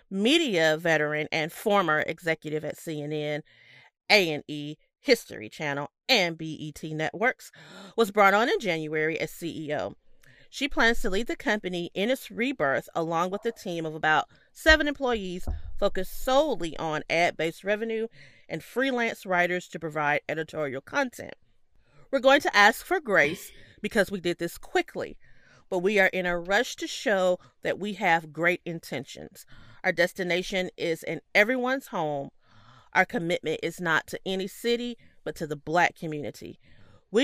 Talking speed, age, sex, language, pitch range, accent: 150 wpm, 40-59, female, English, 155-215 Hz, American